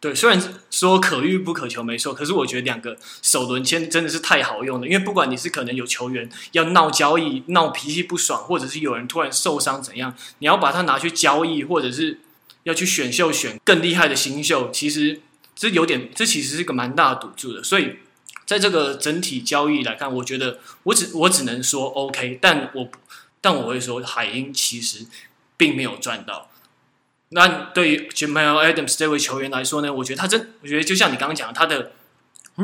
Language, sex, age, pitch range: Chinese, male, 20-39, 130-175 Hz